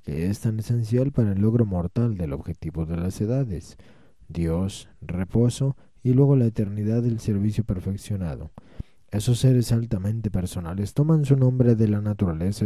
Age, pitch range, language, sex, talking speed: 20-39, 95-125 Hz, Spanish, male, 150 wpm